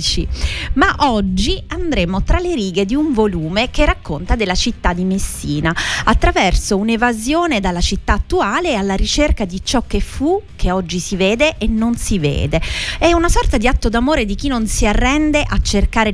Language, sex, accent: Italian, female, native